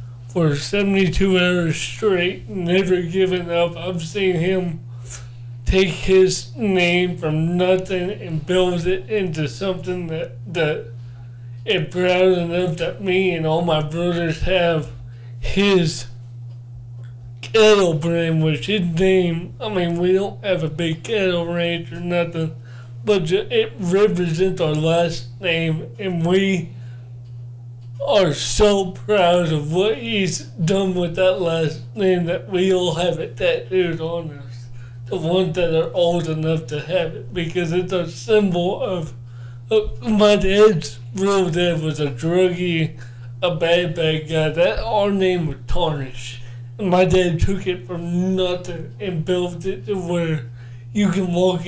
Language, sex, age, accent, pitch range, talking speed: English, male, 20-39, American, 145-185 Hz, 140 wpm